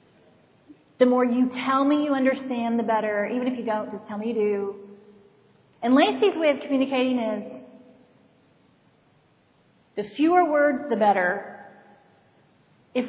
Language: English